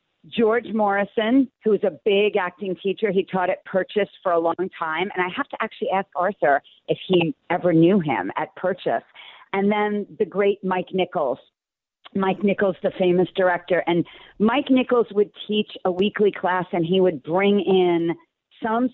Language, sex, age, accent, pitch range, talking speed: English, female, 40-59, American, 175-210 Hz, 175 wpm